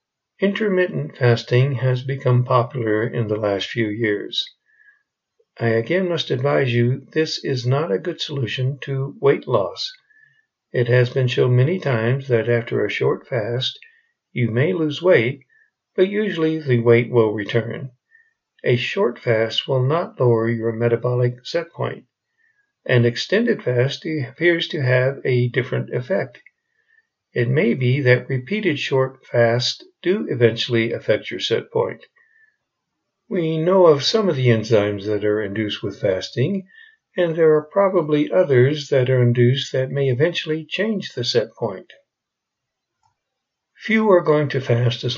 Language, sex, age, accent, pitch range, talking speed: English, male, 60-79, American, 120-185 Hz, 145 wpm